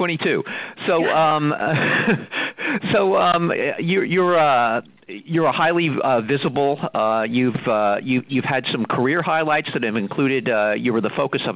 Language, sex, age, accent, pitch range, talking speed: English, male, 50-69, American, 115-160 Hz, 150 wpm